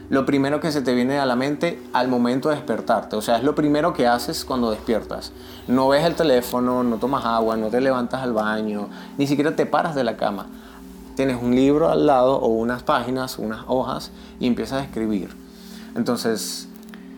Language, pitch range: Spanish, 120-165 Hz